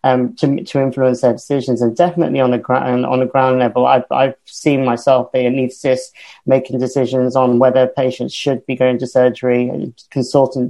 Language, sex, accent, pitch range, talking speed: English, male, British, 120-130 Hz, 185 wpm